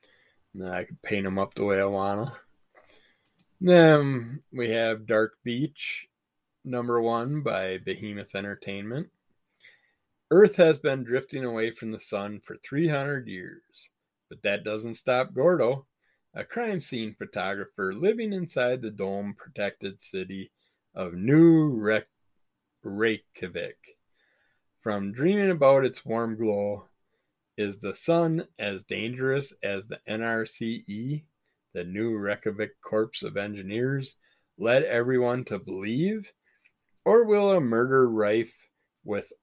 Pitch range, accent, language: 105-135 Hz, American, English